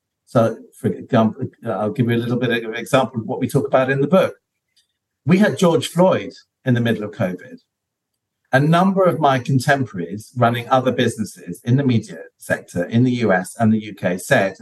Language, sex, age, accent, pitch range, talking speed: English, male, 50-69, British, 105-140 Hz, 190 wpm